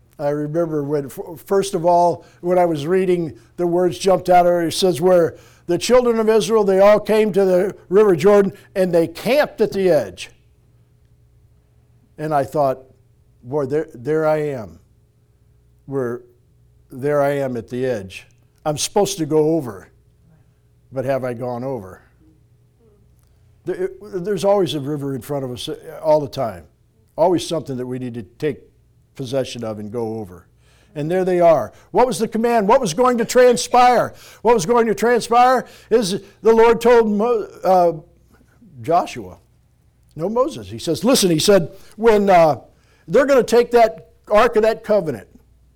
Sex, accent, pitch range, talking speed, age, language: male, American, 125-200 Hz, 165 wpm, 60-79, English